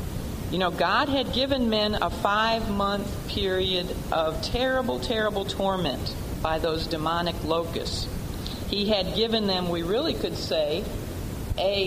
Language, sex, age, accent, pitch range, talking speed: English, female, 50-69, American, 180-235 Hz, 130 wpm